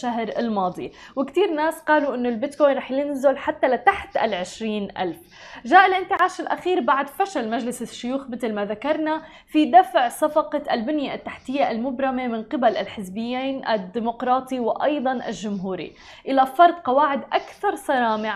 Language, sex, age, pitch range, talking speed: English, female, 20-39, 235-300 Hz, 130 wpm